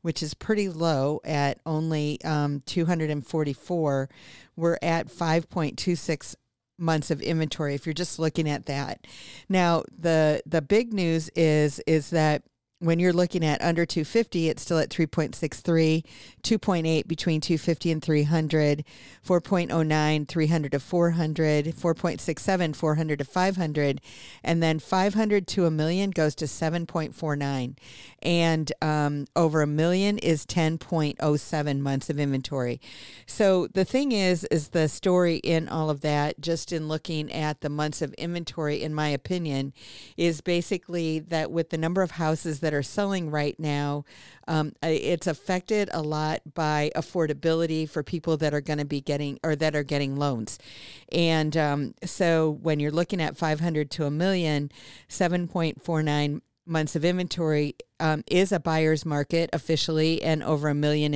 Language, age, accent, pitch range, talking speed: English, 50-69, American, 150-170 Hz, 145 wpm